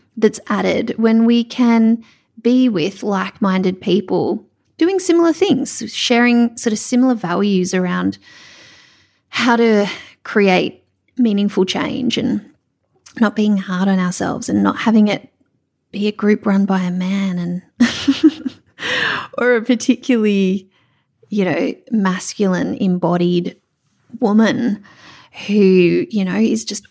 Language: English